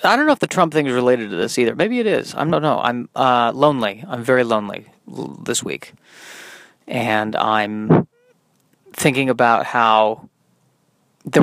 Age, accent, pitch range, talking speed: 30-49, American, 115-135 Hz, 170 wpm